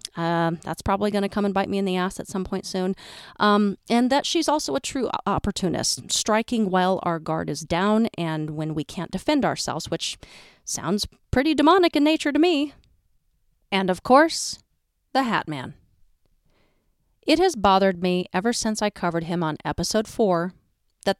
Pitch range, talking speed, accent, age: 170-235 Hz, 180 wpm, American, 40-59